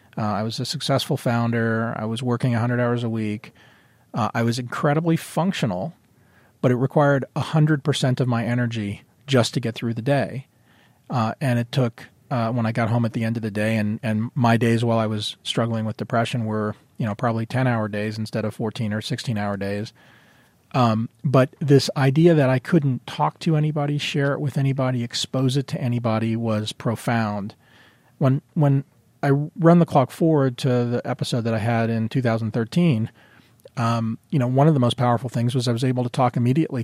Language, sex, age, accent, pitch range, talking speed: English, male, 40-59, American, 115-140 Hz, 195 wpm